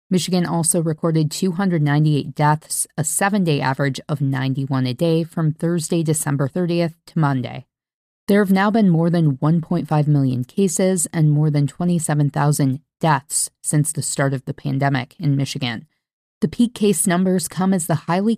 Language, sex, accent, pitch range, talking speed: English, female, American, 145-175 Hz, 155 wpm